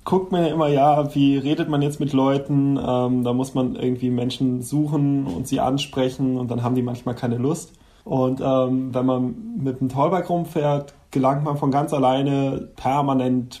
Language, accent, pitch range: German, German, 130-150 Hz